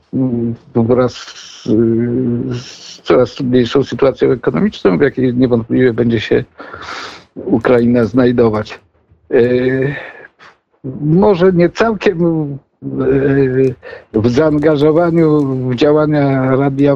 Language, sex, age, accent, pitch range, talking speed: Polish, male, 60-79, native, 115-140 Hz, 75 wpm